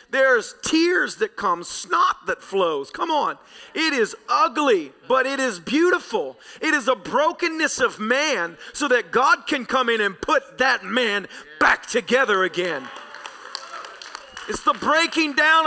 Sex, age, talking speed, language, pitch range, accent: male, 40-59, 150 wpm, English, 250-315 Hz, American